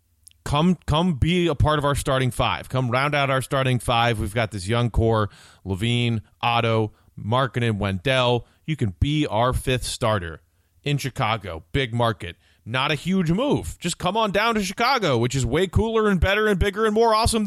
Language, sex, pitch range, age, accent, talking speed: English, male, 100-155 Hz, 30-49, American, 190 wpm